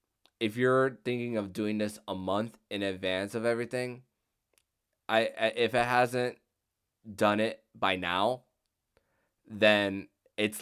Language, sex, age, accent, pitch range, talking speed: English, male, 20-39, American, 95-115 Hz, 125 wpm